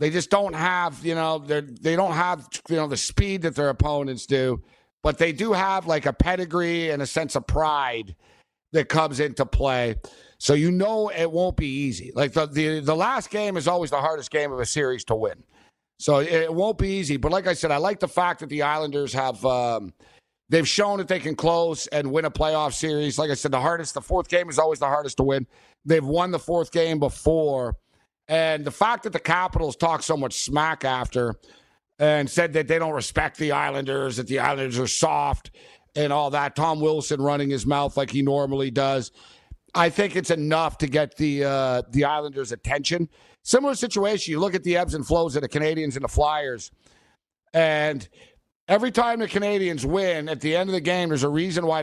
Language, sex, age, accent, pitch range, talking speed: English, male, 60-79, American, 140-170 Hz, 215 wpm